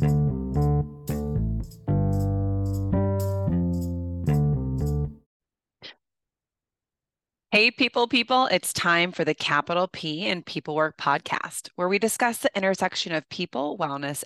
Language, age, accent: English, 20-39, American